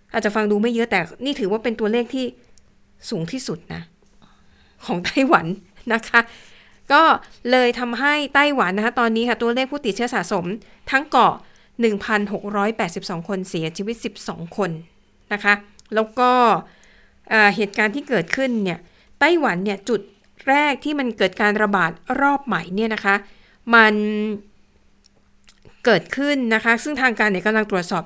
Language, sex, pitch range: Thai, female, 205-255 Hz